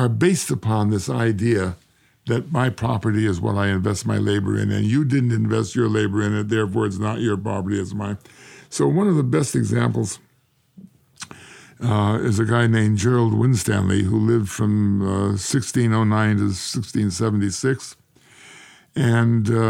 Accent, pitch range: American, 100-125 Hz